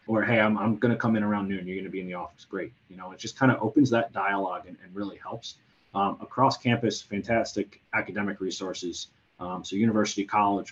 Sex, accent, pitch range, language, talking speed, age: male, American, 95-110 Hz, English, 230 wpm, 30-49